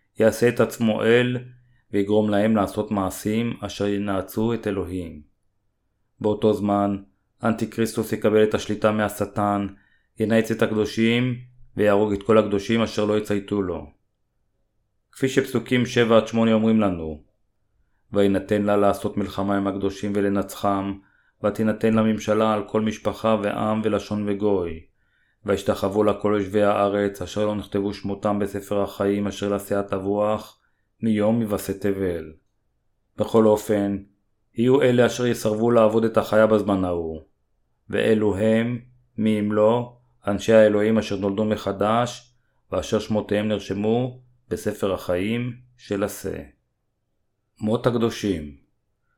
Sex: male